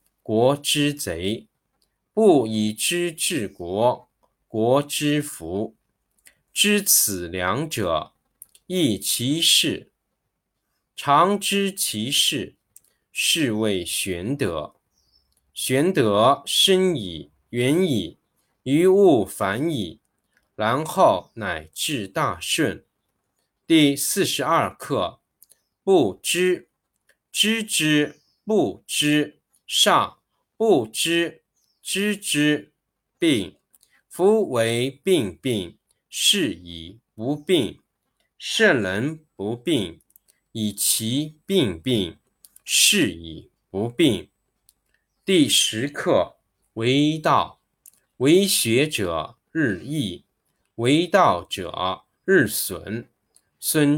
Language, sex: Chinese, male